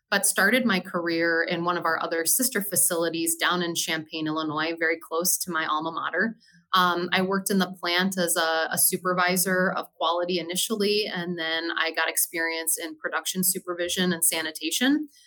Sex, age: female, 20-39